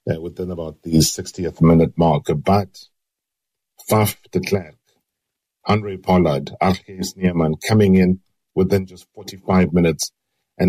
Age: 50-69